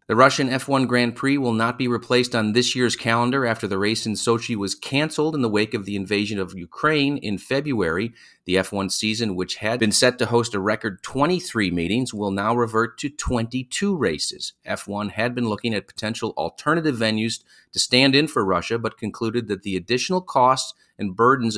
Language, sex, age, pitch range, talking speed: English, male, 40-59, 100-125 Hz, 195 wpm